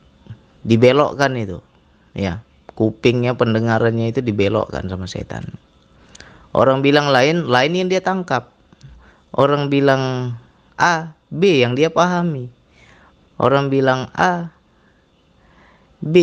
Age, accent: 30-49, native